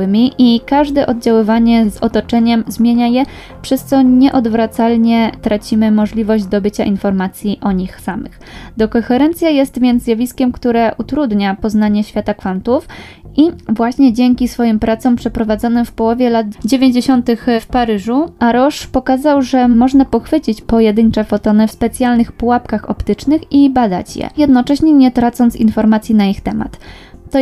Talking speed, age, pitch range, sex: 135 wpm, 10-29, 220-255 Hz, female